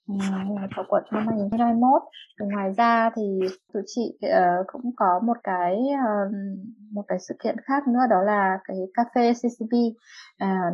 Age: 20-39